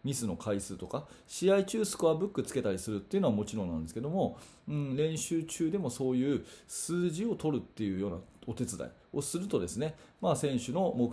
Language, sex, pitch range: Japanese, male, 115-165 Hz